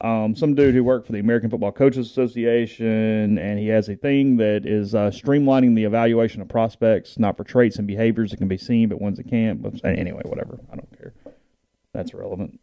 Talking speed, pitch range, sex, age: 215 wpm, 100-115 Hz, male, 30-49